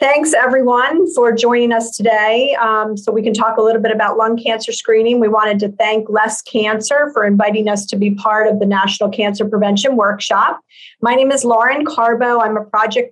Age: 40-59